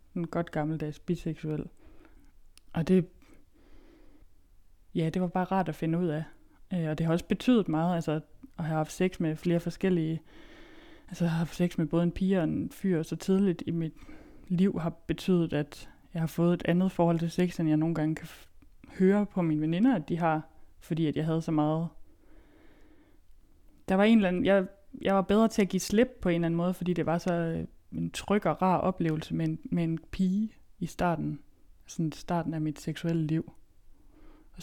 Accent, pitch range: native, 160-190 Hz